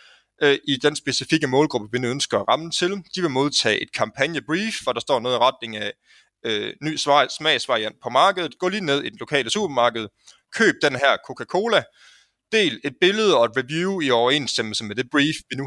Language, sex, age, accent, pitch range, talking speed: English, male, 30-49, Danish, 125-170 Hz, 195 wpm